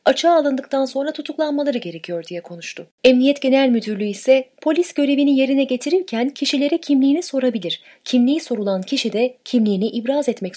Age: 30-49